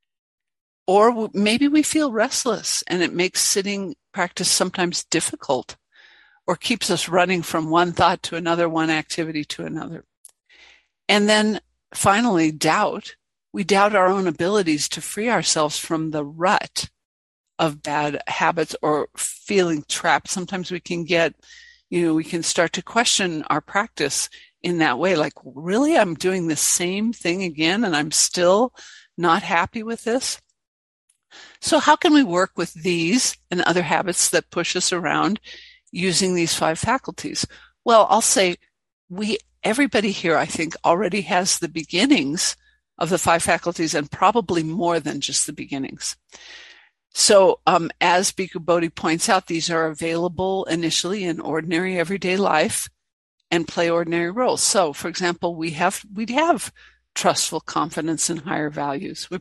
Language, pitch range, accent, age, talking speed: English, 165-205 Hz, American, 60-79, 150 wpm